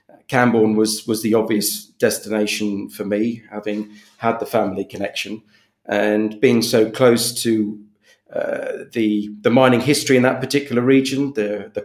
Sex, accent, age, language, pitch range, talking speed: male, British, 40-59, English, 105-125 Hz, 145 wpm